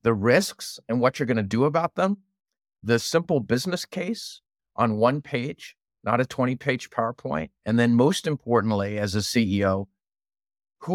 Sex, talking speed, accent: male, 160 wpm, American